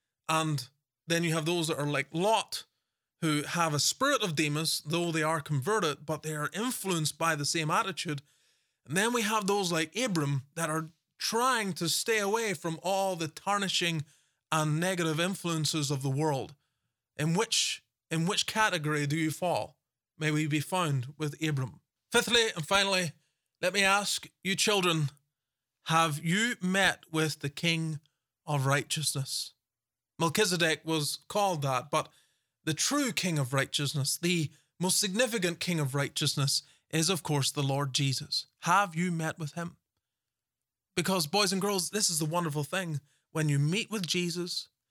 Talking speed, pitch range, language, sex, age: 160 wpm, 145-185 Hz, English, male, 20-39